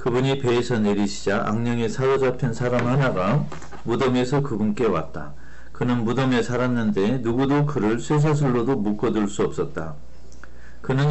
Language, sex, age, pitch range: Korean, male, 40-59, 105-140 Hz